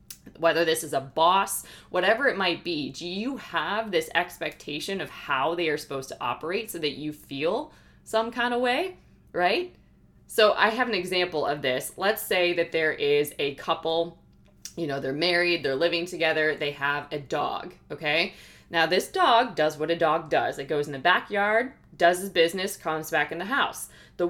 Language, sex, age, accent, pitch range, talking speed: English, female, 20-39, American, 165-230 Hz, 195 wpm